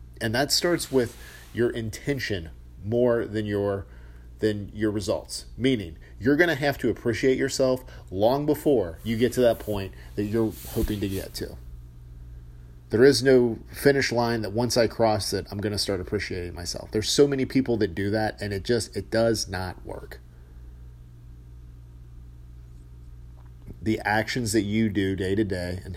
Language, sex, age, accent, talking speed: English, male, 40-59, American, 165 wpm